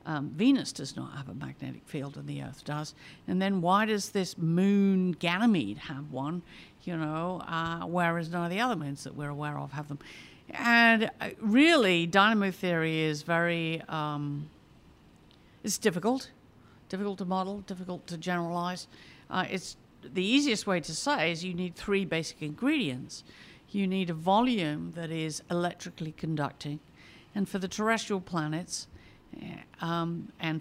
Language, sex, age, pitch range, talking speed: English, female, 50-69, 155-195 Hz, 155 wpm